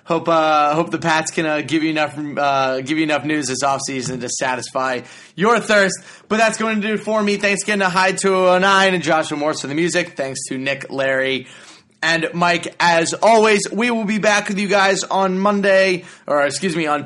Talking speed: 220 wpm